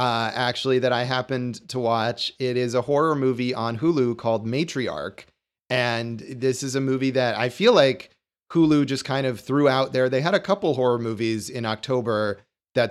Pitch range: 120-145 Hz